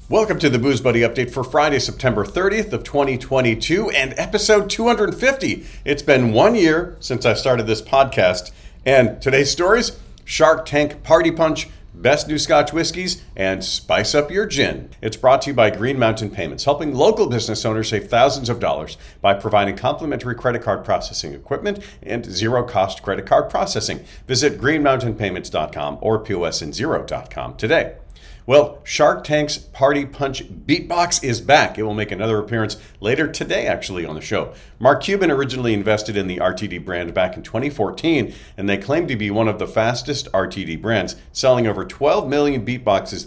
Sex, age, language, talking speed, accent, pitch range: male, 50-69, English, 165 wpm, American, 105-145 Hz